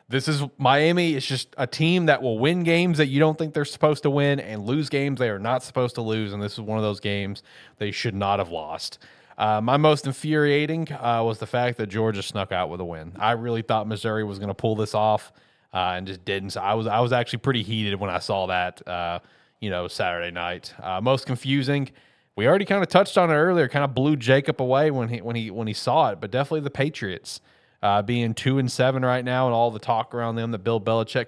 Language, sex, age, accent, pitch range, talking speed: English, male, 30-49, American, 105-140 Hz, 250 wpm